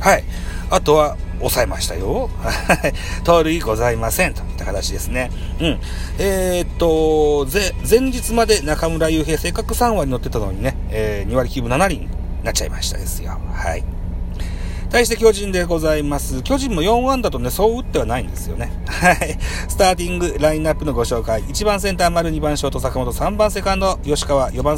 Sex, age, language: male, 40-59, Japanese